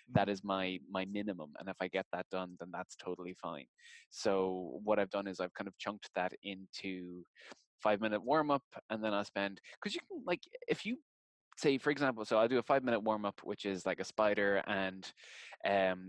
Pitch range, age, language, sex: 95-115 Hz, 20-39, English, male